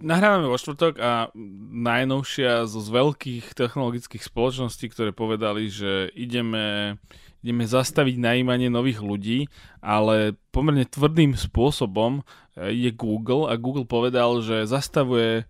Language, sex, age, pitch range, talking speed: Slovak, male, 20-39, 120-140 Hz, 115 wpm